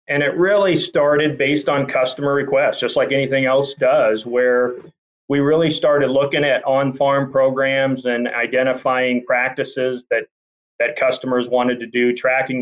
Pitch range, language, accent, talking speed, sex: 120-145 Hz, English, American, 150 wpm, male